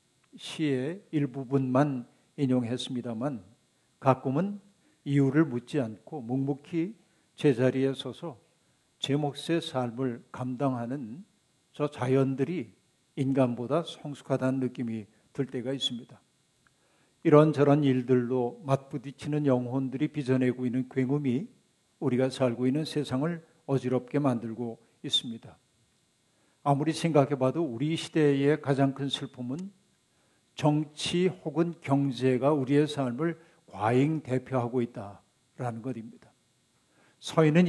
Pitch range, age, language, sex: 125-150 Hz, 50-69, Korean, male